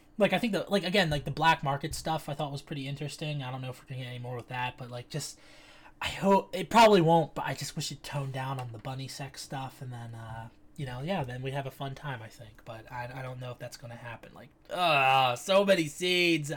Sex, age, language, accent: male, 20-39, English, American